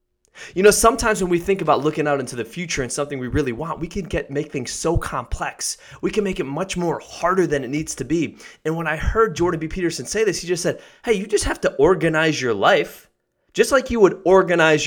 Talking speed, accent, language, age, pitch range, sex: 245 wpm, American, English, 20-39, 145-200 Hz, male